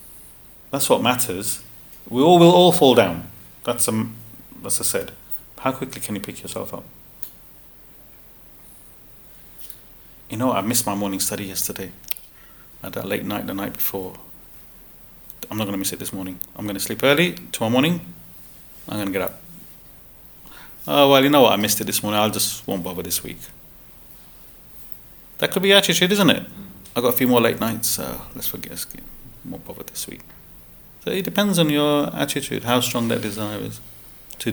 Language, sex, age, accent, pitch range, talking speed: English, male, 30-49, British, 105-135 Hz, 180 wpm